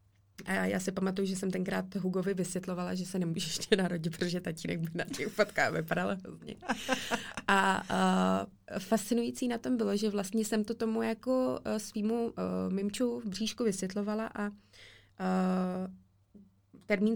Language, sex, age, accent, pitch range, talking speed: Czech, female, 20-39, native, 180-210 Hz, 145 wpm